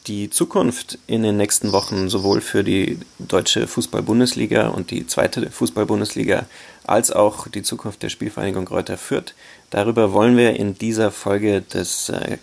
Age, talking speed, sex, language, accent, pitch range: 30-49, 150 wpm, male, German, German, 100-115 Hz